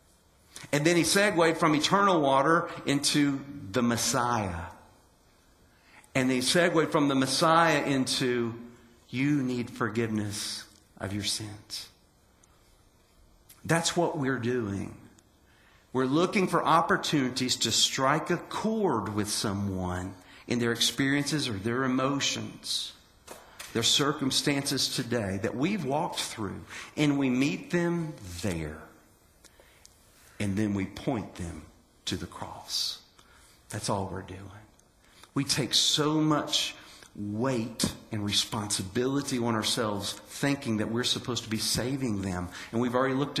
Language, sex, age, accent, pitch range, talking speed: English, male, 50-69, American, 100-140 Hz, 125 wpm